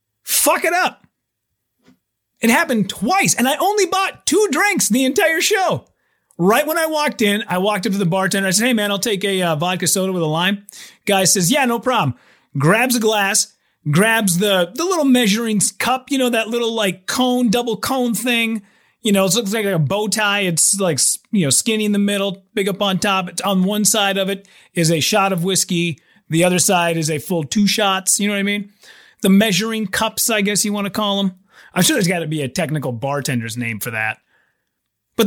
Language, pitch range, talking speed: English, 175-230 Hz, 220 wpm